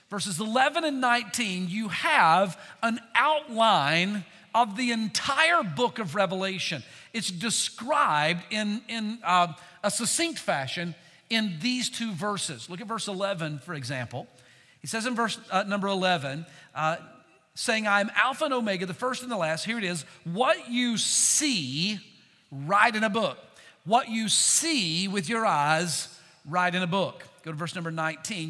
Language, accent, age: English, American, 50-69